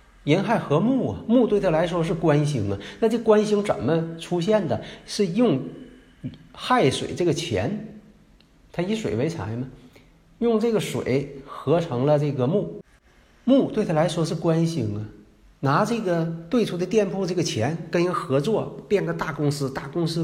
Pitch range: 125-185 Hz